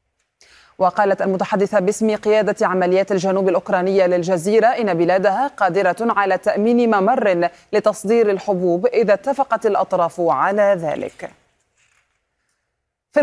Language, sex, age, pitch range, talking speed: Arabic, female, 30-49, 190-230 Hz, 100 wpm